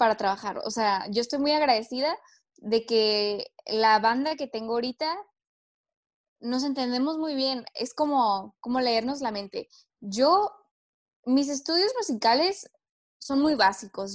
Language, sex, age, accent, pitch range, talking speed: Spanish, female, 10-29, Mexican, 220-280 Hz, 135 wpm